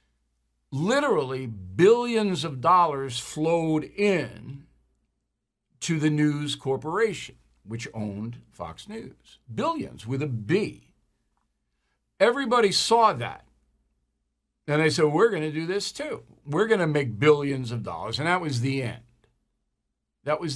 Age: 60-79